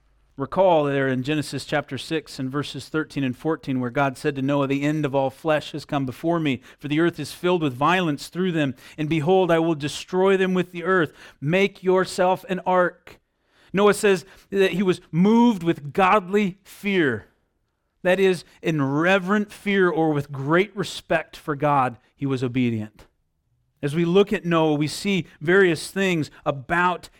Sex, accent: male, American